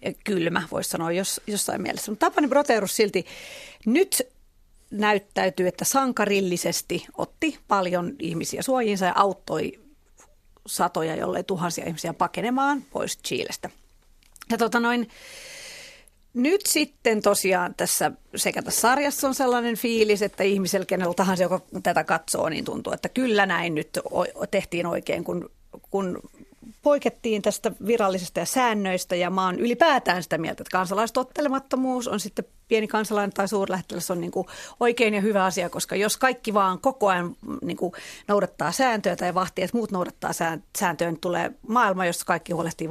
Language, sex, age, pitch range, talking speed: Finnish, female, 40-59, 185-245 Hz, 145 wpm